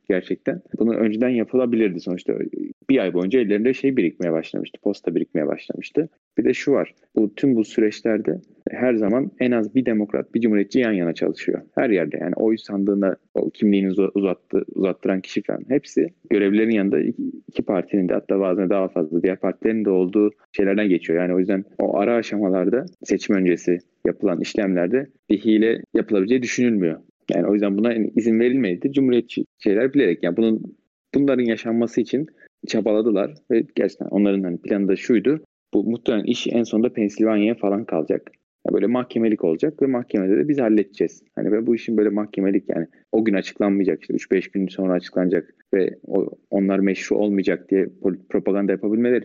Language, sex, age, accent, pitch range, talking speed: Turkish, male, 30-49, native, 95-115 Hz, 170 wpm